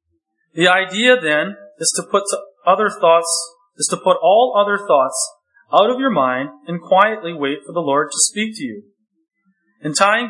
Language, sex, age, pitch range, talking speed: English, male, 40-59, 160-225 Hz, 180 wpm